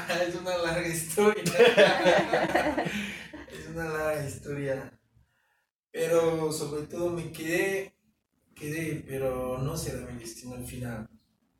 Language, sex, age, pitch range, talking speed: English, male, 30-49, 135-185 Hz, 105 wpm